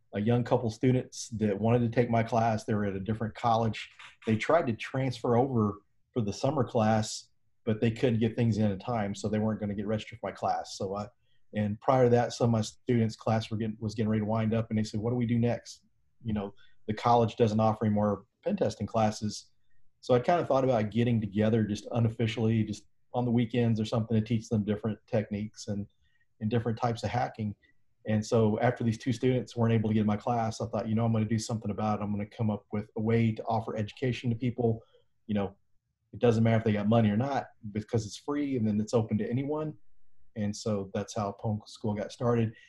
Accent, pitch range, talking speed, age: American, 105-120 Hz, 240 wpm, 40-59